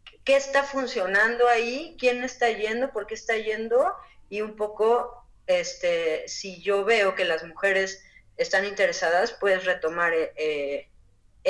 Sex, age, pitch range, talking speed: female, 30-49, 170-215 Hz, 130 wpm